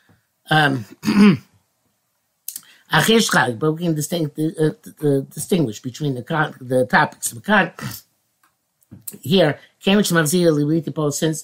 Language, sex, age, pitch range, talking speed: English, male, 60-79, 130-165 Hz, 105 wpm